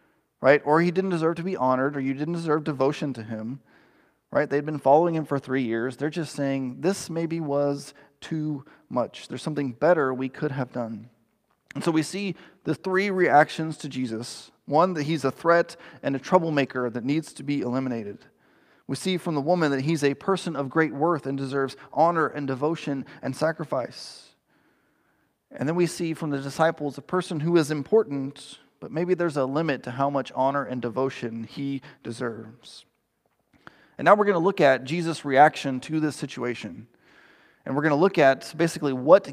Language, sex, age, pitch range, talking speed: English, male, 30-49, 130-165 Hz, 190 wpm